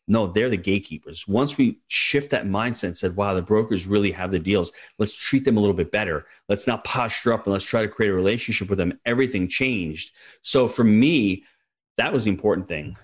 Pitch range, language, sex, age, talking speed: 100-125 Hz, English, male, 30-49, 220 wpm